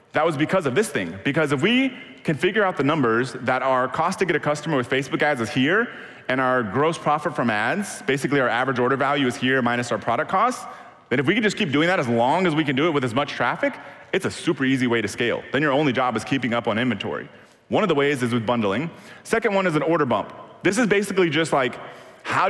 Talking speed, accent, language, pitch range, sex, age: 260 wpm, American, English, 130-165 Hz, male, 30-49